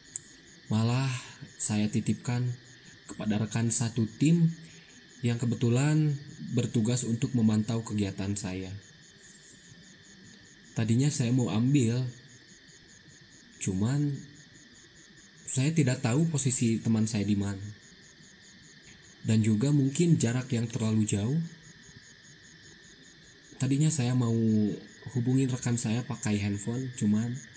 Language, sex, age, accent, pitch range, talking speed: Indonesian, male, 20-39, native, 110-140 Hz, 95 wpm